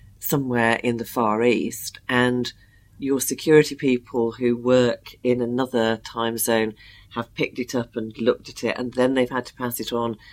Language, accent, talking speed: English, British, 180 wpm